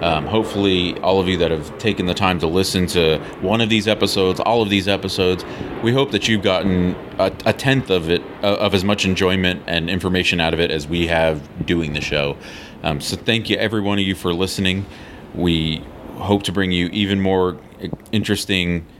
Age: 30-49